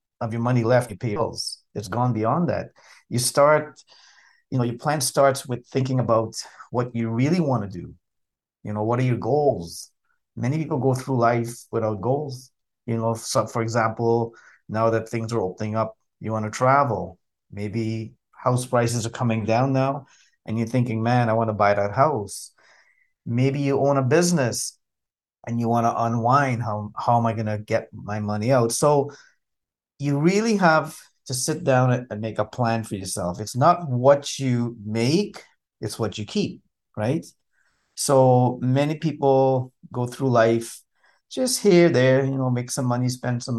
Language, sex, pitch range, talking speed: English, male, 115-140 Hz, 180 wpm